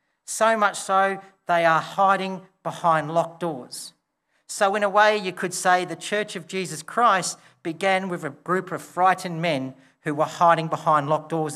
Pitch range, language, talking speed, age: 150-190 Hz, English, 175 wpm, 40-59